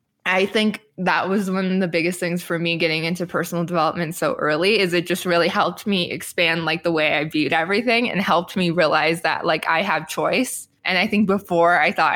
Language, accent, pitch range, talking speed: English, American, 170-210 Hz, 220 wpm